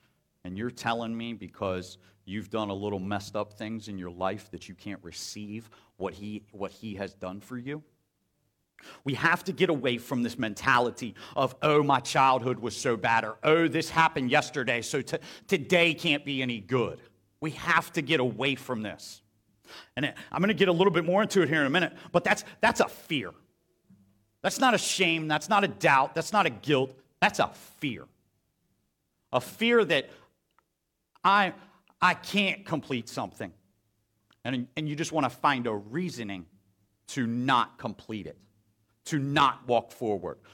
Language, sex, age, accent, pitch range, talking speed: English, male, 40-59, American, 105-155 Hz, 180 wpm